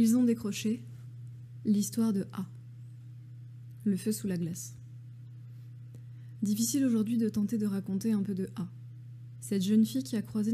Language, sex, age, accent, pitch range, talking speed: French, female, 20-39, French, 120-200 Hz, 155 wpm